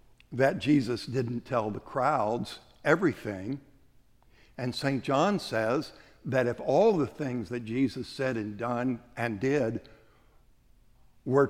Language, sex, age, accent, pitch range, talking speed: English, male, 60-79, American, 110-135 Hz, 125 wpm